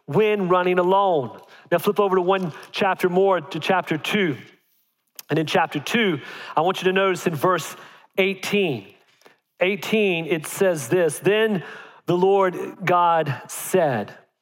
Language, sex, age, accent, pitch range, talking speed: English, male, 40-59, American, 170-200 Hz, 140 wpm